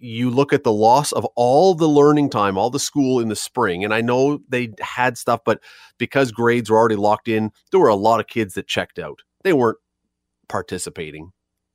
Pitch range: 115-150 Hz